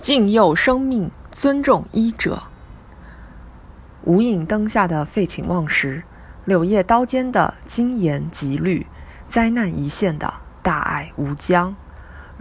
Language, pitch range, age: Chinese, 155-220 Hz, 20-39